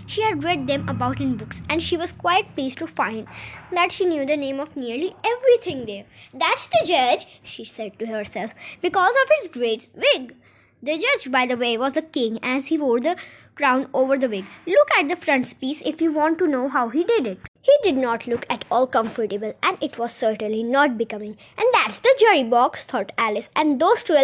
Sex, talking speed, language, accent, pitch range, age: female, 215 wpm, Hindi, native, 245-345 Hz, 20-39